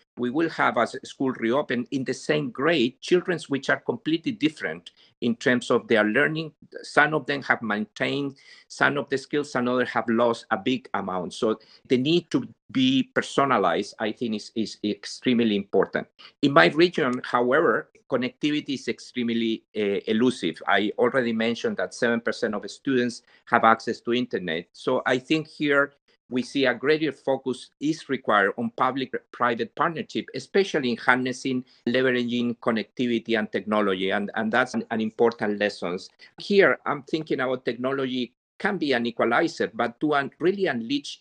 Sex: male